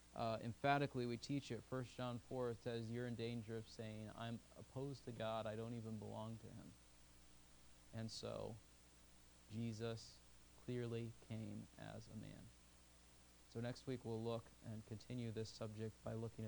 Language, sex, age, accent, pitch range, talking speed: English, male, 30-49, American, 105-125 Hz, 155 wpm